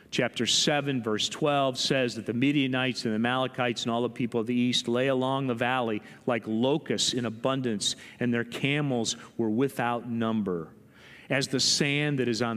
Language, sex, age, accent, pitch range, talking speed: English, male, 40-59, American, 115-135 Hz, 180 wpm